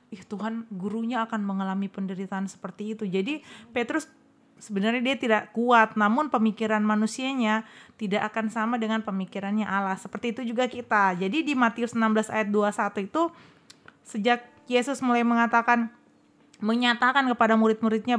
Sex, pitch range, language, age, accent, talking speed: female, 210-240 Hz, Indonesian, 20-39, native, 135 wpm